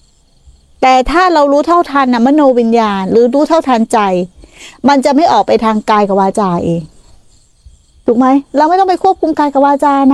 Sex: female